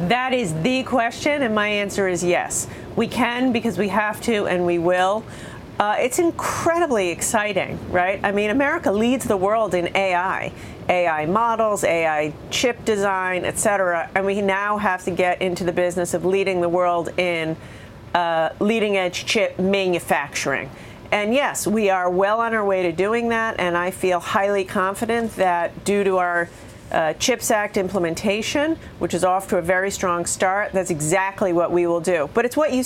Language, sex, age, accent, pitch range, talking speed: English, female, 40-59, American, 180-220 Hz, 175 wpm